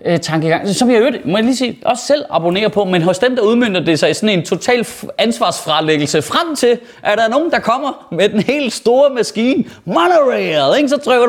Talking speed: 185 wpm